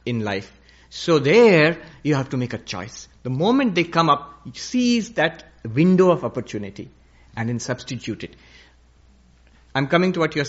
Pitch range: 95-165 Hz